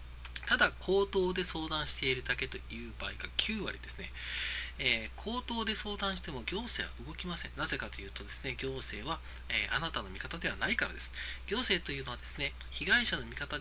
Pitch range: 125-195 Hz